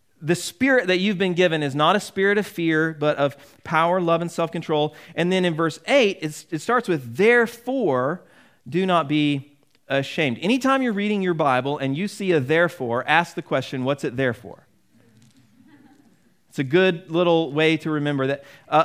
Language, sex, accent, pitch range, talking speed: English, male, American, 140-185 Hz, 180 wpm